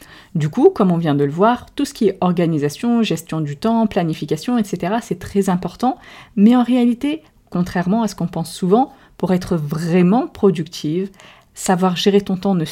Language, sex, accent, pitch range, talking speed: French, female, French, 170-225 Hz, 185 wpm